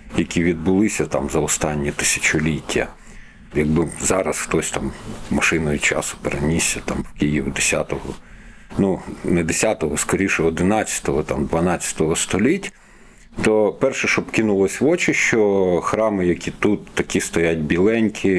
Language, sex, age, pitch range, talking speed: Ukrainian, male, 40-59, 80-105 Hz, 125 wpm